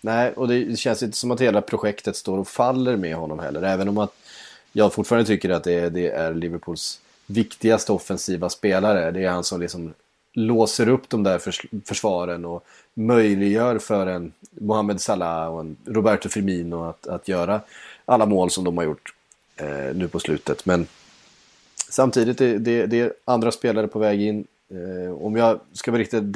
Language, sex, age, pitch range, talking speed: Swedish, male, 30-49, 85-110 Hz, 175 wpm